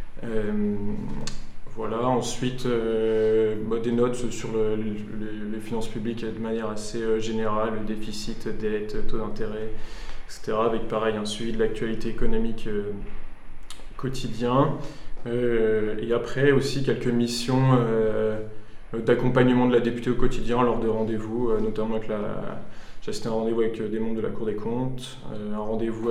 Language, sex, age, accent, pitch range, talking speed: French, male, 20-39, French, 110-120 Hz, 155 wpm